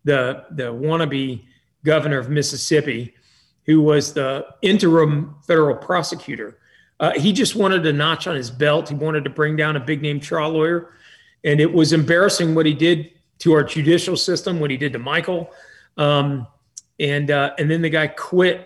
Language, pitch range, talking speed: English, 145-175 Hz, 175 wpm